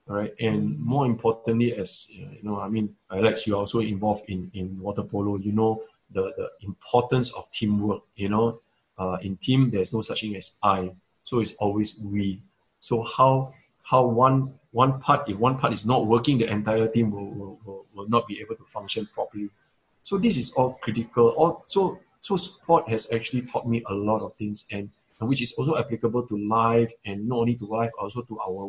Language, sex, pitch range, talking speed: English, male, 105-120 Hz, 210 wpm